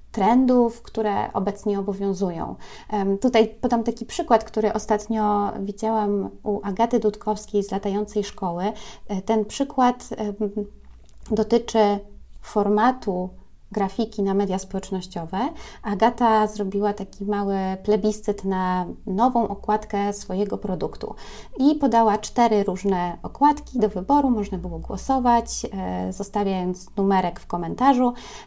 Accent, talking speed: native, 105 wpm